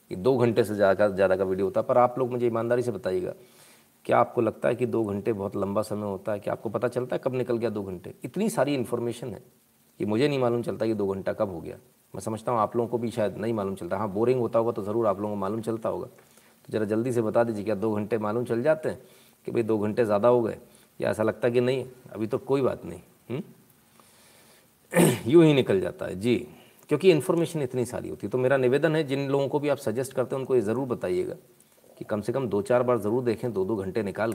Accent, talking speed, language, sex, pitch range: native, 260 wpm, Hindi, male, 110-130 Hz